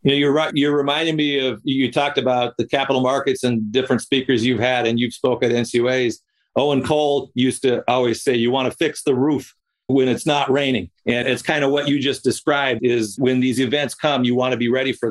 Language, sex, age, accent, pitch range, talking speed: English, male, 50-69, American, 120-145 Hz, 230 wpm